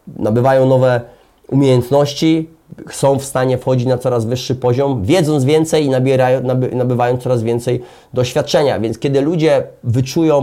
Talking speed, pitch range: 130 wpm, 120-145 Hz